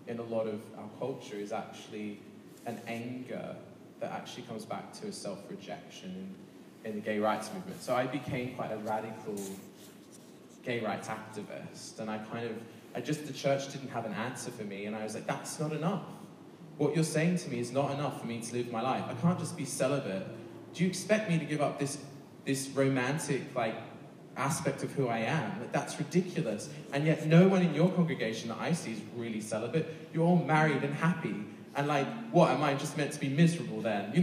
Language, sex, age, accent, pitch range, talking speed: English, male, 20-39, British, 110-155 Hz, 210 wpm